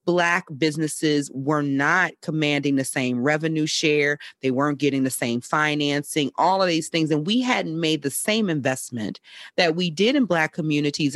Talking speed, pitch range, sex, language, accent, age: 170 wpm, 140-170 Hz, female, English, American, 40-59